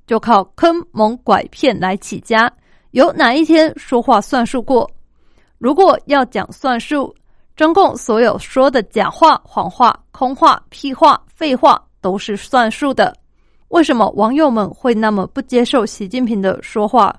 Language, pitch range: Chinese, 220-290 Hz